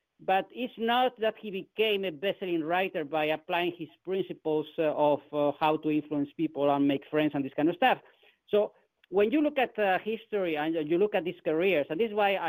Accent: Spanish